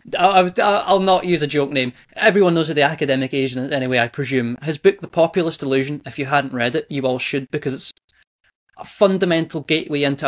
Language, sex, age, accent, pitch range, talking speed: English, male, 20-39, British, 135-170 Hz, 205 wpm